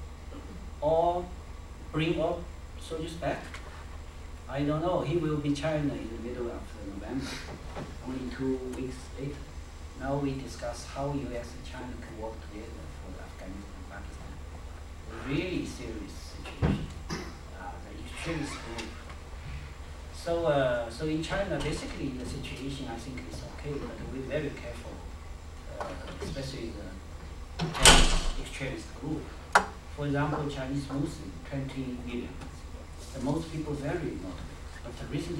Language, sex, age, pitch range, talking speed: English, male, 40-59, 75-130 Hz, 135 wpm